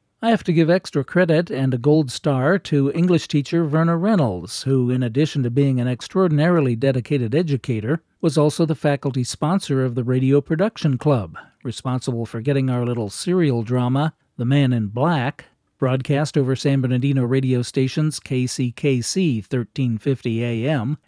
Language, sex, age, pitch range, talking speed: English, male, 50-69, 125-165 Hz, 155 wpm